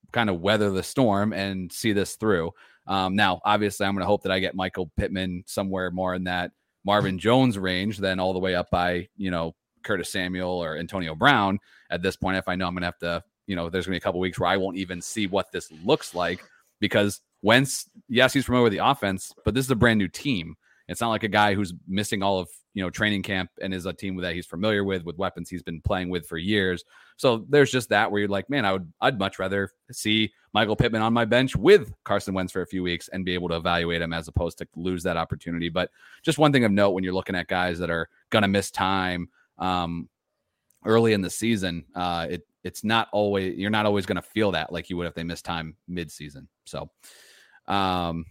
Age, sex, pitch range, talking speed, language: 30-49, male, 90-105 Hz, 245 wpm, English